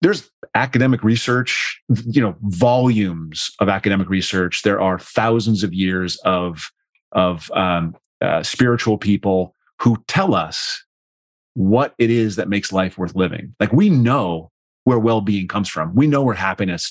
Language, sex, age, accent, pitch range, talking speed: English, male, 30-49, American, 95-115 Hz, 150 wpm